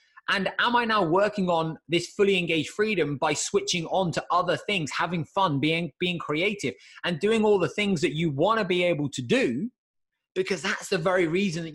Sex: male